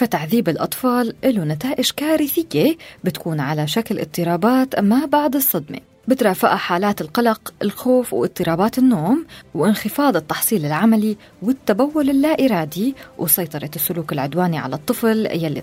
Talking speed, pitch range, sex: 115 wpm, 175-260 Hz, female